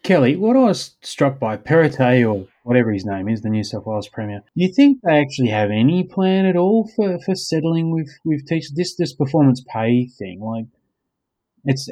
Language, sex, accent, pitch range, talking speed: English, male, Australian, 105-135 Hz, 200 wpm